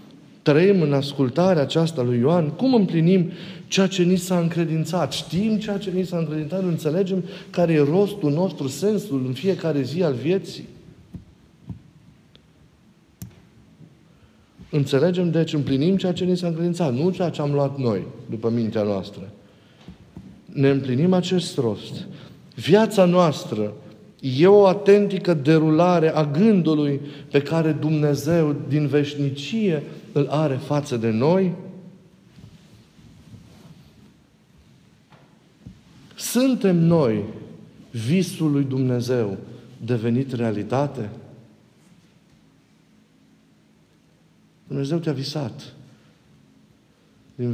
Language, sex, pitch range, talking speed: Romanian, male, 135-180 Hz, 100 wpm